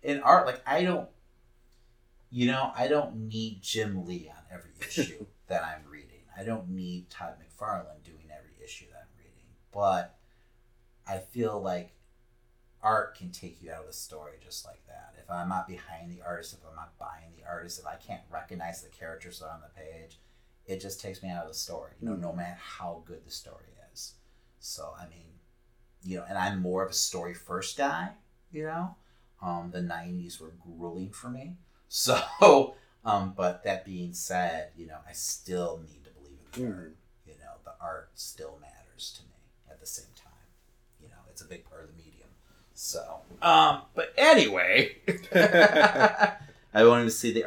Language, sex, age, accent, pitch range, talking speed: English, male, 30-49, American, 85-120 Hz, 190 wpm